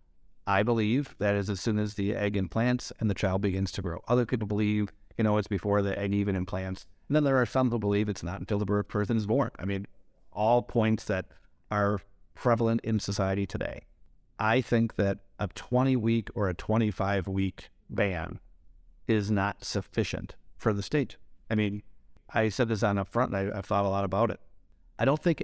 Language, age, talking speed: English, 50-69, 210 wpm